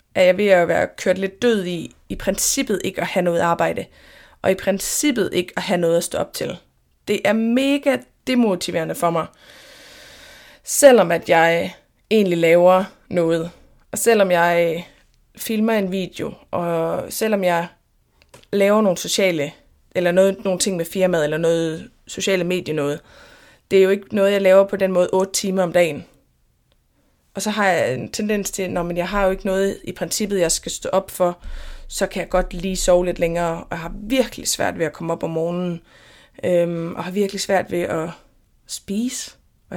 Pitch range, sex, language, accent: 175-215 Hz, female, Danish, native